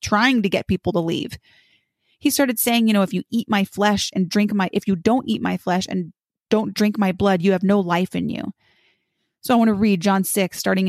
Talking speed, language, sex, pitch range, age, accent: 240 wpm, English, female, 185-230 Hz, 30-49, American